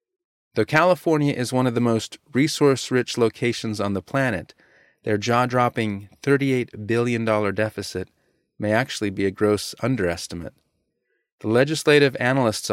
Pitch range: 100-125 Hz